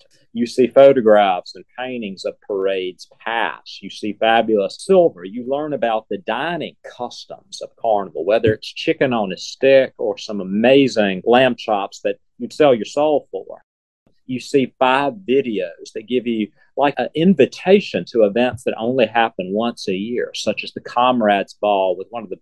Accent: American